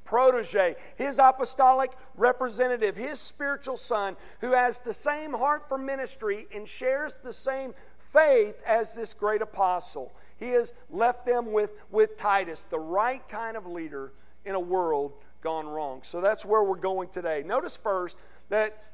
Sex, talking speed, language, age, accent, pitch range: male, 155 wpm, English, 50-69, American, 190-260 Hz